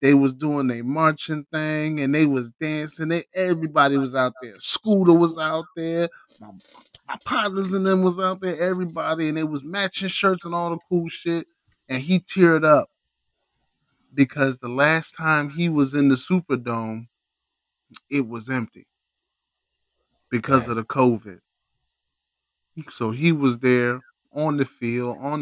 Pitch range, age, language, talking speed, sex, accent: 140-195 Hz, 20-39, English, 155 wpm, male, American